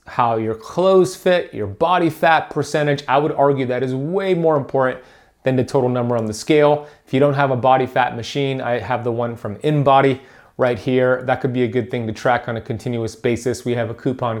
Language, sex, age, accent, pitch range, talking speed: English, male, 30-49, American, 115-145 Hz, 230 wpm